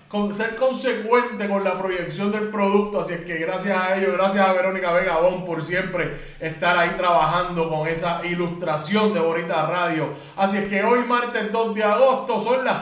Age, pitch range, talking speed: 20-39, 170-220 Hz, 190 wpm